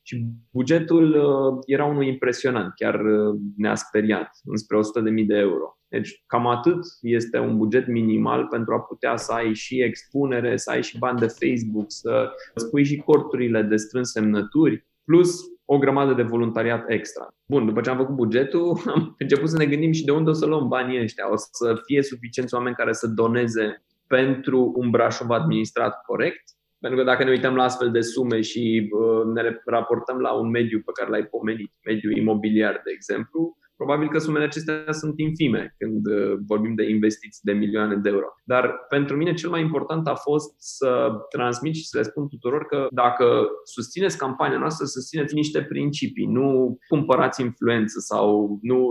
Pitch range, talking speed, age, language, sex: 115-145 Hz, 175 wpm, 20-39, Romanian, male